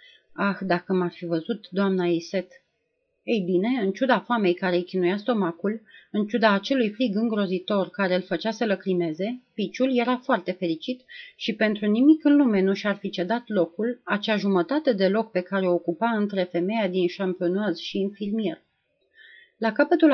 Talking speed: 170 wpm